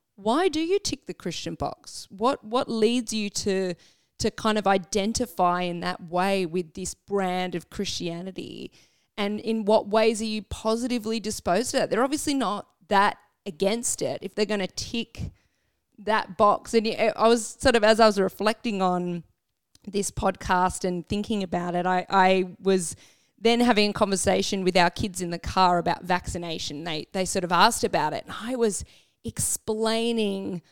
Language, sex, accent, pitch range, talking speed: English, female, Australian, 185-235 Hz, 175 wpm